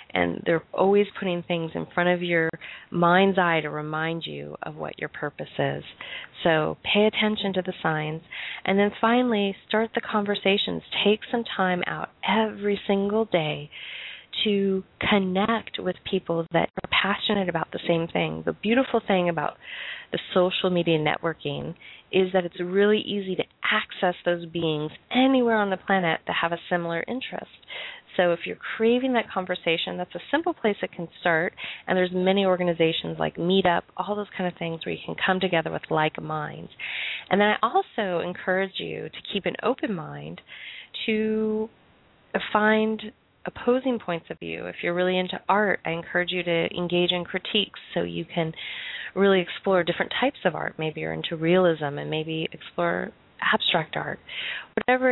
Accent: American